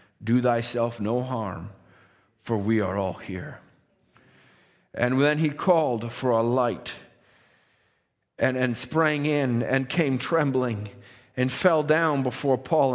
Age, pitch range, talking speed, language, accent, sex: 40-59, 100-140 Hz, 130 wpm, English, American, male